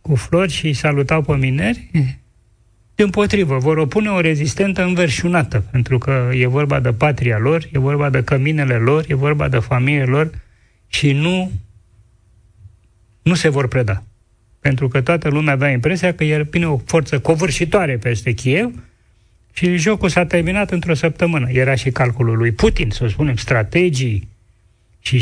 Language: Romanian